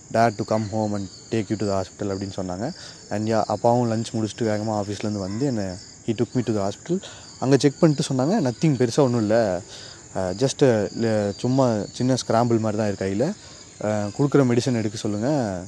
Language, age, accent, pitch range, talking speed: Tamil, 20-39, native, 105-135 Hz, 170 wpm